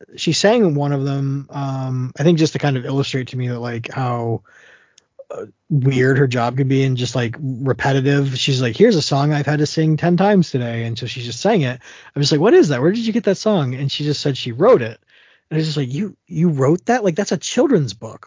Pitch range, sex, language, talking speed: 135-170 Hz, male, English, 255 wpm